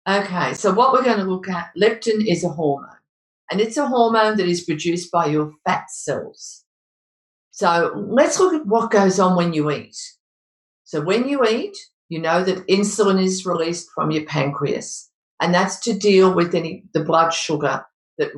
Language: English